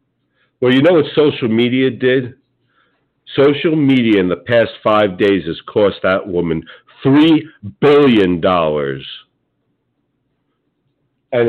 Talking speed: 110 wpm